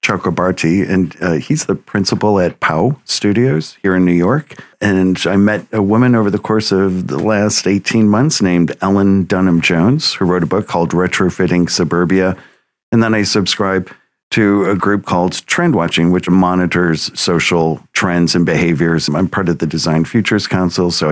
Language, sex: English, male